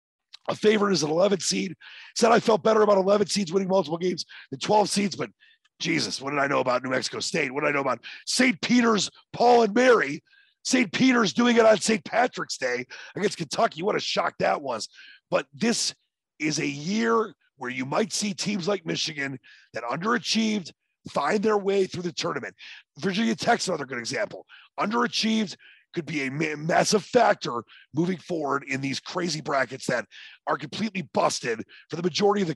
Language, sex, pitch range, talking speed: English, male, 140-220 Hz, 185 wpm